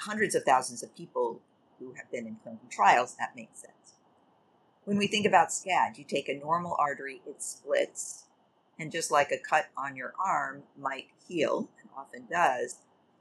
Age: 50-69